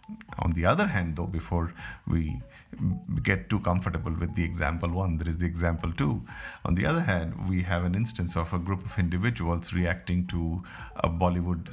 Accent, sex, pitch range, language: Indian, male, 85-95 Hz, English